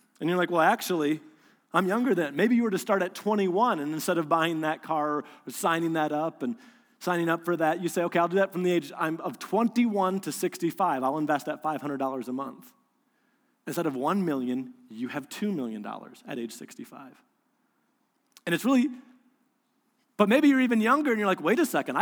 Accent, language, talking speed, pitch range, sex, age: American, English, 205 wpm, 170-245 Hz, male, 30-49